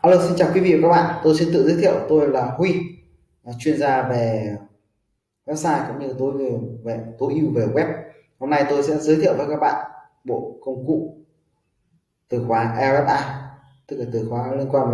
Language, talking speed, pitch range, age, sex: Vietnamese, 205 wpm, 115-140 Hz, 20-39, male